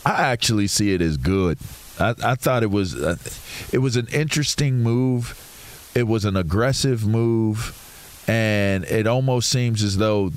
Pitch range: 105-130 Hz